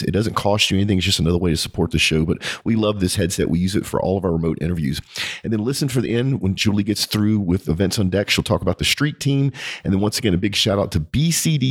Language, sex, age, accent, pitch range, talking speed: English, male, 40-59, American, 90-115 Hz, 290 wpm